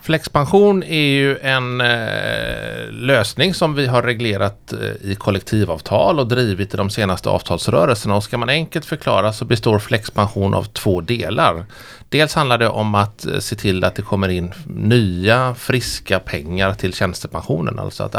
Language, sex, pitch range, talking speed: Swedish, male, 95-125 Hz, 160 wpm